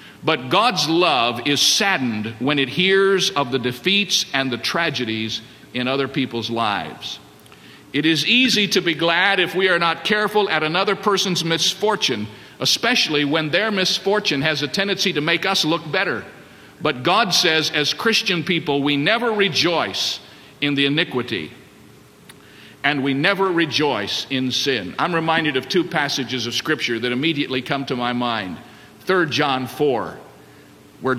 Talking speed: 155 wpm